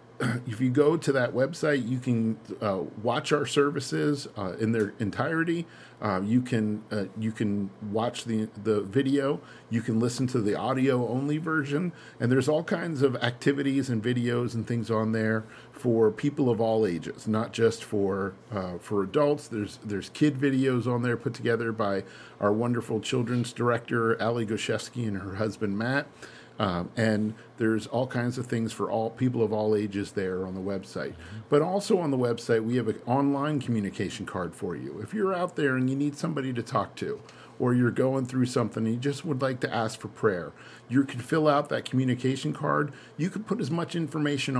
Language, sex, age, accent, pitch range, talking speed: English, male, 50-69, American, 110-140 Hz, 190 wpm